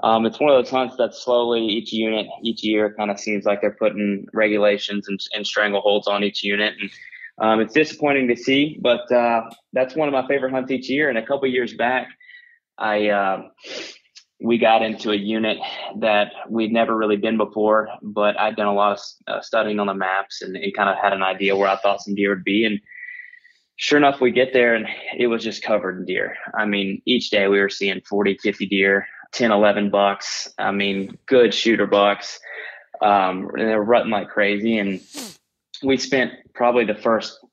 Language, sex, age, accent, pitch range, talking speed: English, male, 20-39, American, 100-120 Hz, 205 wpm